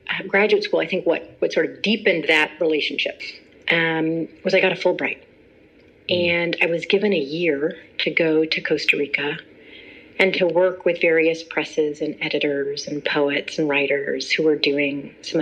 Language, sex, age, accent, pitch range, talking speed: English, female, 30-49, American, 160-205 Hz, 175 wpm